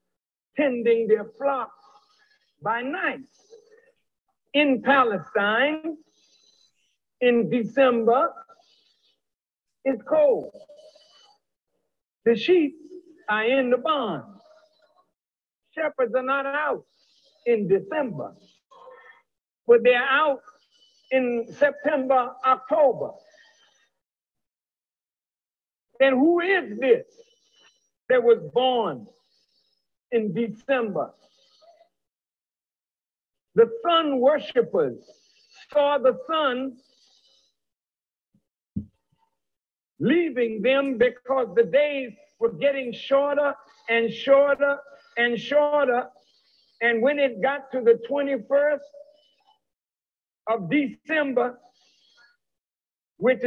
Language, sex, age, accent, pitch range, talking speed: French, male, 50-69, American, 240-310 Hz, 75 wpm